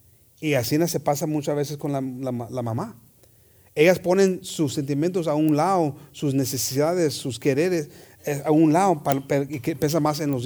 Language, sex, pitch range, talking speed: English, male, 130-215 Hz, 165 wpm